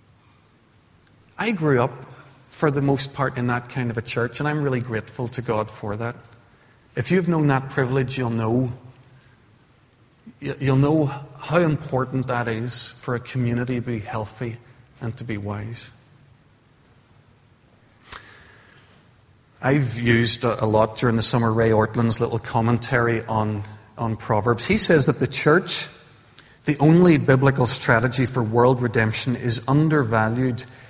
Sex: male